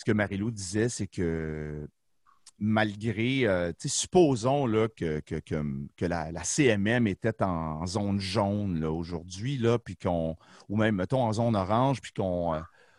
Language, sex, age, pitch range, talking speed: French, male, 40-59, 95-130 Hz, 160 wpm